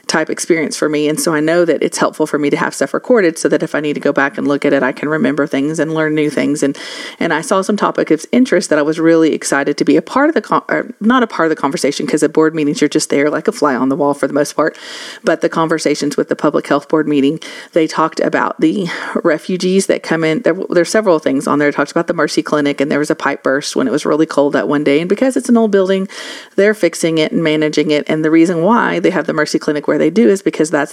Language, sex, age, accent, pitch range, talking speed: English, female, 40-59, American, 145-175 Hz, 295 wpm